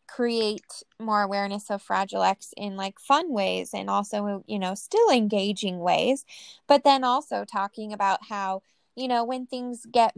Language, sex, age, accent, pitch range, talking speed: English, female, 10-29, American, 200-230 Hz, 165 wpm